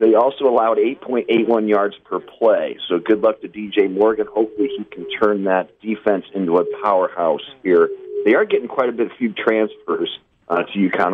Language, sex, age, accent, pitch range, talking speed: English, male, 40-59, American, 95-135 Hz, 190 wpm